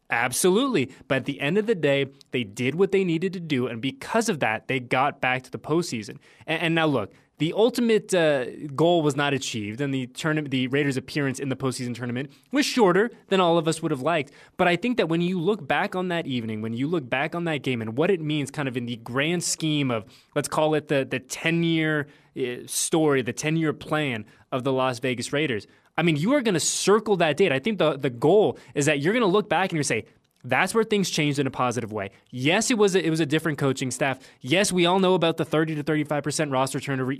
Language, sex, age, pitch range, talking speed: English, male, 20-39, 130-175 Hz, 250 wpm